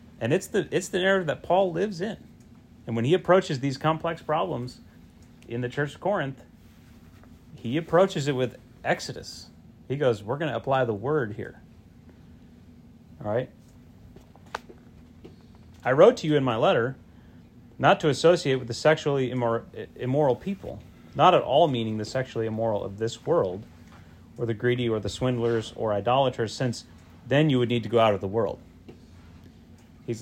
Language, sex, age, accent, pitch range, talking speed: English, male, 30-49, American, 100-140 Hz, 165 wpm